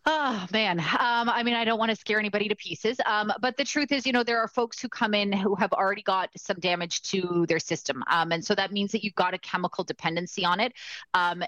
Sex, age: female, 30-49